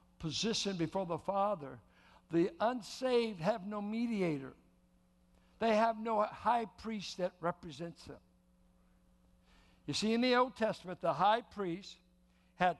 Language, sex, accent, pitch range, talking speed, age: English, male, American, 160-220 Hz, 125 wpm, 60-79